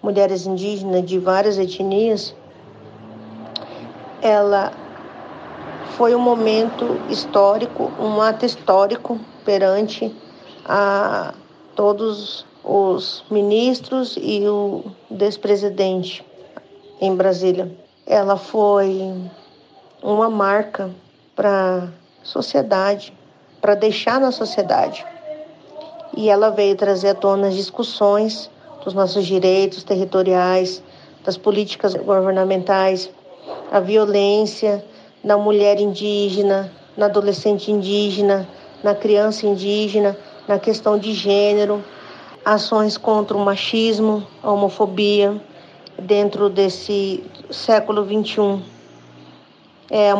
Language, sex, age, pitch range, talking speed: Portuguese, female, 50-69, 195-215 Hz, 90 wpm